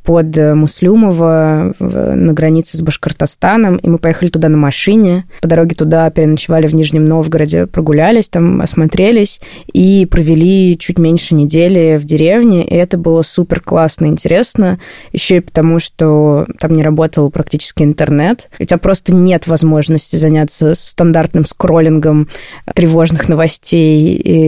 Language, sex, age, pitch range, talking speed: Russian, female, 20-39, 155-175 Hz, 135 wpm